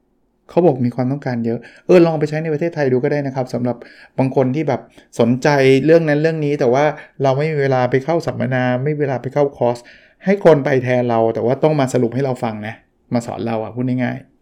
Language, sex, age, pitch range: Thai, male, 20-39, 115-140 Hz